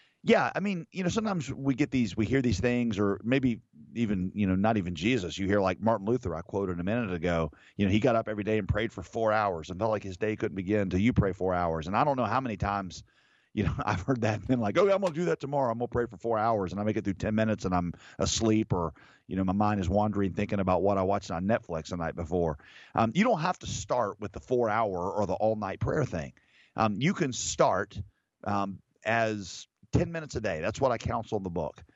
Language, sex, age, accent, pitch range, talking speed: English, male, 40-59, American, 95-120 Hz, 270 wpm